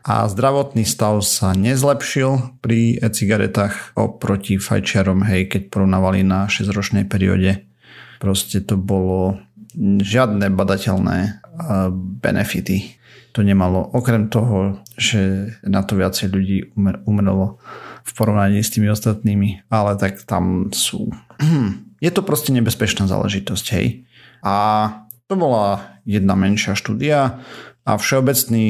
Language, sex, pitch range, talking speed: Slovak, male, 100-115 Hz, 115 wpm